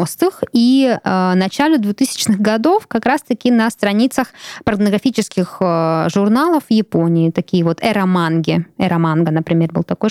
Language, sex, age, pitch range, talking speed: Russian, female, 20-39, 195-270 Hz, 115 wpm